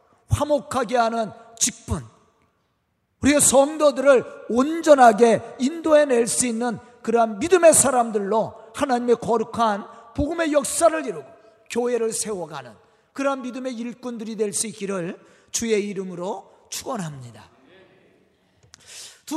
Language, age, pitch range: Korean, 40-59, 230-300 Hz